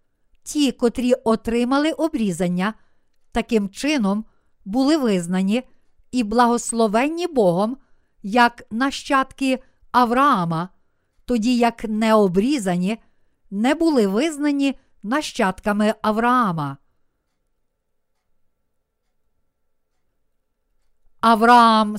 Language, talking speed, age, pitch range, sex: Ukrainian, 65 wpm, 50-69, 205-255 Hz, female